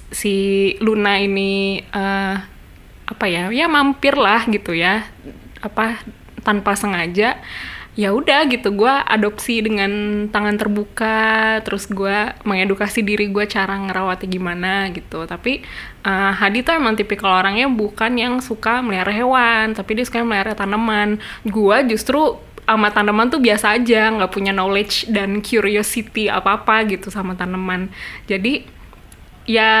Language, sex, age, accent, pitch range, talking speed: Indonesian, female, 20-39, native, 195-250 Hz, 135 wpm